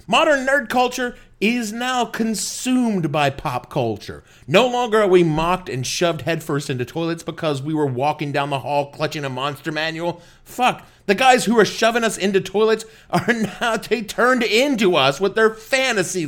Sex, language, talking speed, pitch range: male, English, 175 wpm, 135-200 Hz